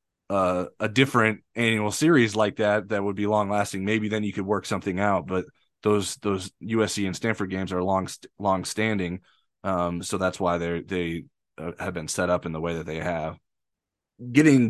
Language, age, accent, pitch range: English, 20-39, American, 95-110 Hz